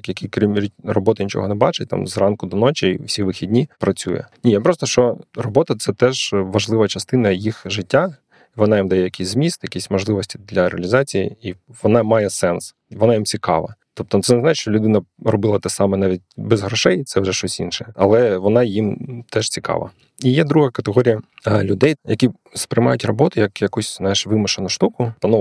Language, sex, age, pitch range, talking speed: Ukrainian, male, 20-39, 100-120 Hz, 175 wpm